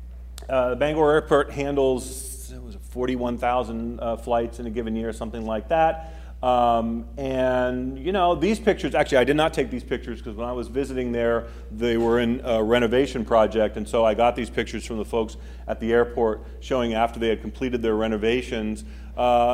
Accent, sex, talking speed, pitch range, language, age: American, male, 175 wpm, 110-140 Hz, English, 40-59